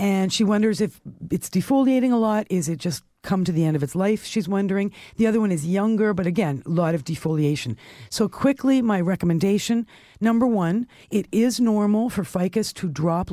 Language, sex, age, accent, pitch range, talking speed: English, female, 50-69, American, 140-190 Hz, 200 wpm